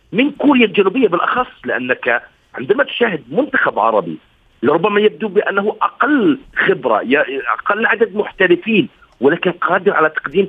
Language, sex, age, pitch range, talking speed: Arabic, male, 50-69, 165-220 Hz, 120 wpm